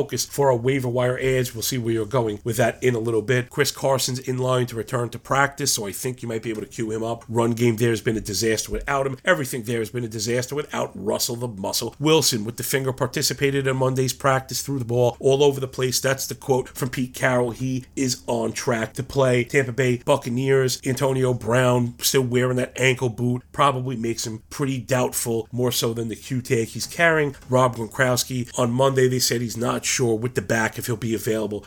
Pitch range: 115-135 Hz